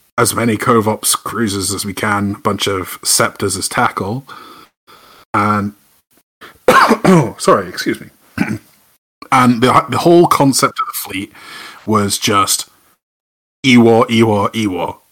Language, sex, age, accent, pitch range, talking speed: English, male, 30-49, British, 100-120 Hz, 125 wpm